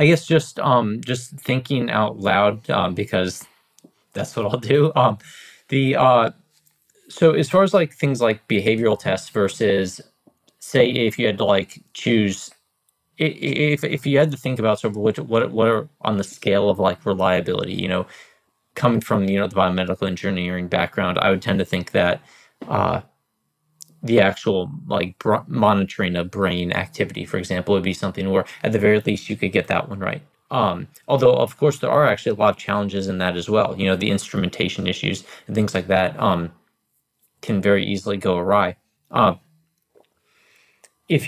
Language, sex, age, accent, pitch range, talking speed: English, male, 20-39, American, 95-135 Hz, 180 wpm